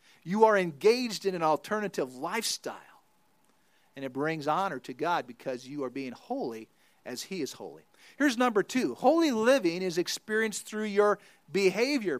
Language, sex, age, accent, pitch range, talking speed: English, male, 50-69, American, 160-220 Hz, 155 wpm